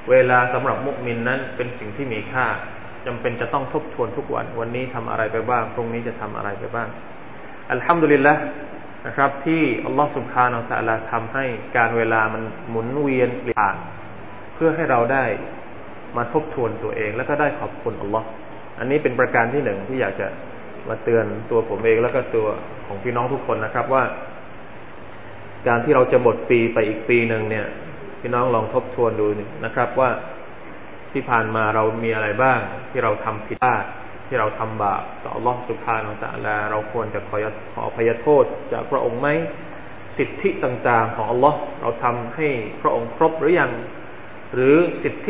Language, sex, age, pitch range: Thai, male, 20-39, 115-145 Hz